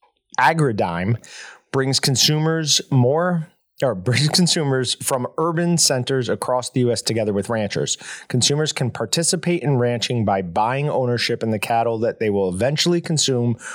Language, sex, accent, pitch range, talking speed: English, male, American, 110-140 Hz, 120 wpm